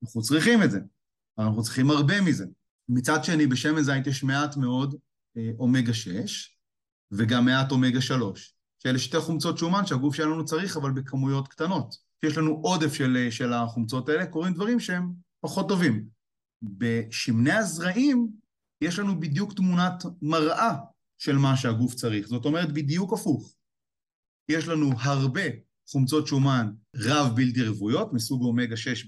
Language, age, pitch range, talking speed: Hebrew, 30-49, 120-160 Hz, 140 wpm